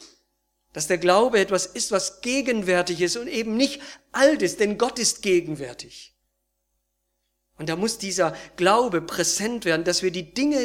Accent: German